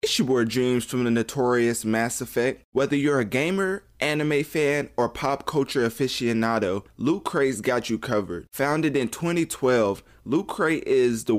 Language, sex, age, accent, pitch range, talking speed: English, male, 20-39, American, 115-140 Hz, 165 wpm